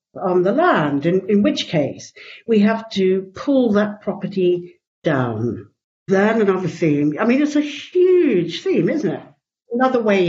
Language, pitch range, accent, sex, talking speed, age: English, 160-215 Hz, British, female, 155 wpm, 60-79